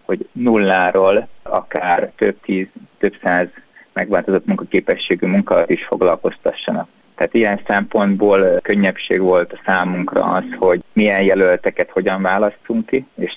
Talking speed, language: 120 wpm, Hungarian